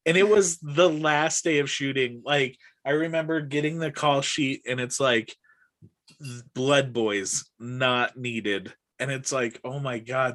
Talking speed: 160 wpm